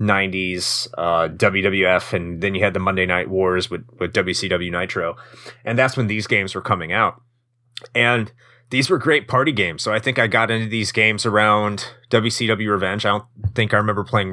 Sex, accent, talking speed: male, American, 190 wpm